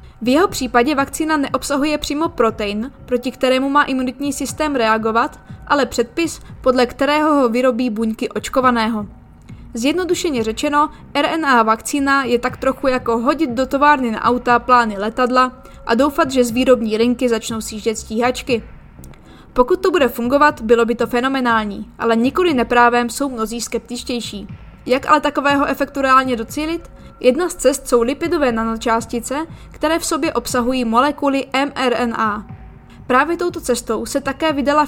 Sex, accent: female, native